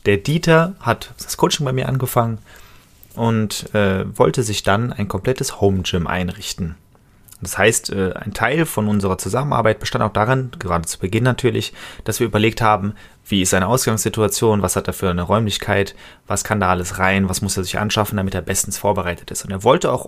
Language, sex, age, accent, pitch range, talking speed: German, male, 30-49, German, 95-130 Hz, 195 wpm